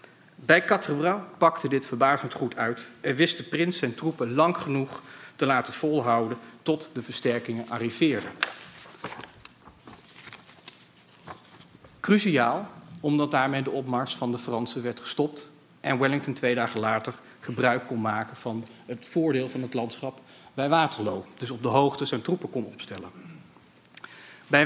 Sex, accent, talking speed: male, Dutch, 140 wpm